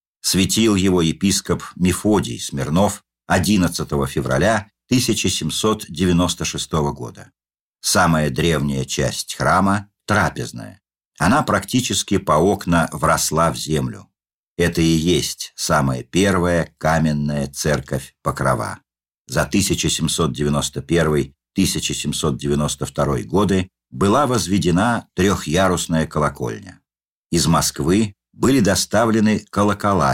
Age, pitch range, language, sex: 50-69, 75-95 Hz, Russian, male